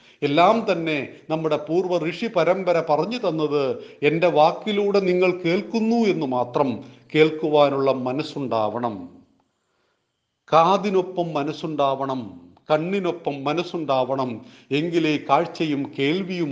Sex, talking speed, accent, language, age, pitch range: male, 80 wpm, native, Malayalam, 40-59, 130-170 Hz